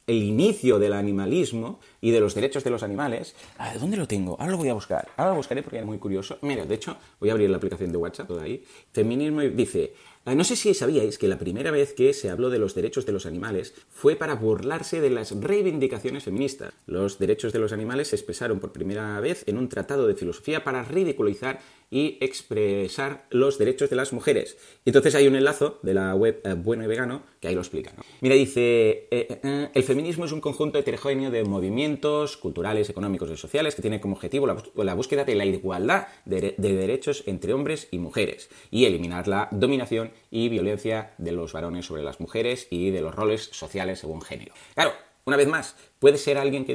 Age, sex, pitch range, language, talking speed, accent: 30-49, male, 105-150 Hz, Spanish, 215 wpm, Spanish